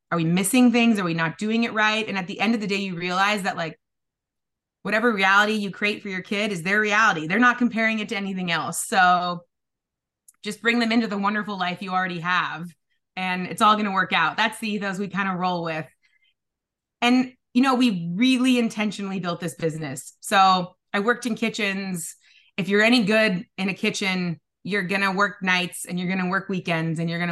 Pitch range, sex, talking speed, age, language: 180-220 Hz, female, 215 wpm, 20-39, English